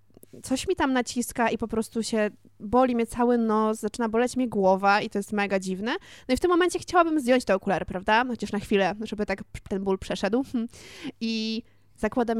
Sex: female